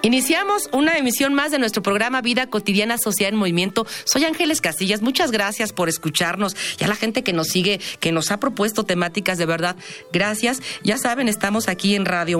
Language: Spanish